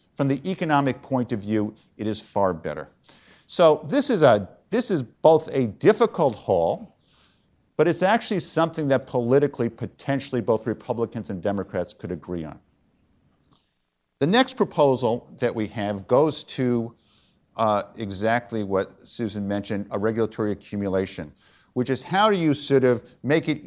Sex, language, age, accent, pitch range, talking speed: male, English, 50-69, American, 110-145 Hz, 150 wpm